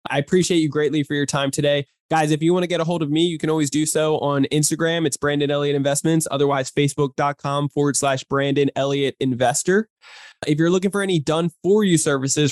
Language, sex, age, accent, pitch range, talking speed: English, male, 20-39, American, 135-160 Hz, 215 wpm